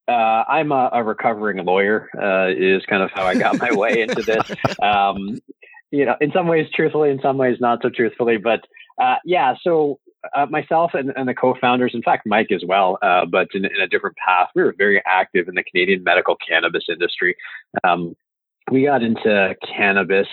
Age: 30-49